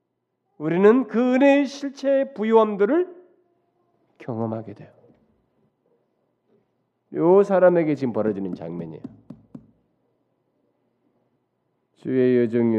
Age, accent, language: 40-59, native, Korean